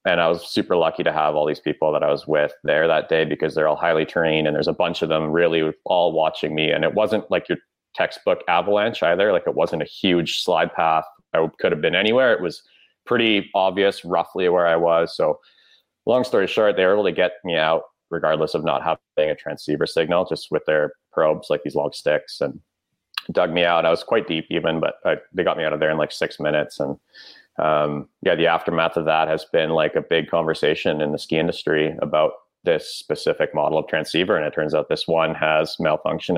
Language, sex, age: English, male, 30-49